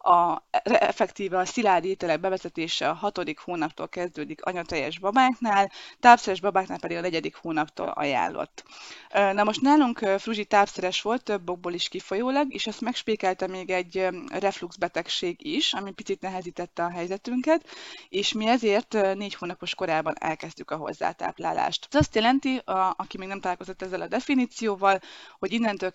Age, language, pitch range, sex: 20-39, Hungarian, 180-215 Hz, female